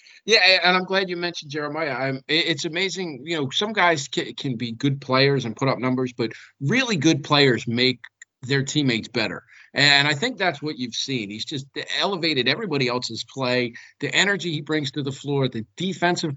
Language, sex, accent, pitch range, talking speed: English, male, American, 120-160 Hz, 190 wpm